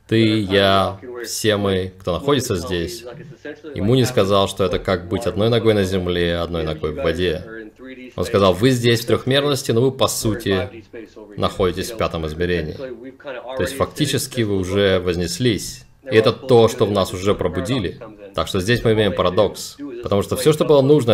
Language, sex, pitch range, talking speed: Russian, male, 90-120 Hz, 175 wpm